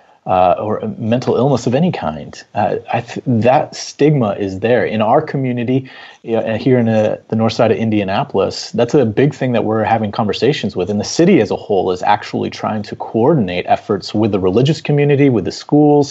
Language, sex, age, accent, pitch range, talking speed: English, male, 30-49, American, 105-130 Hz, 185 wpm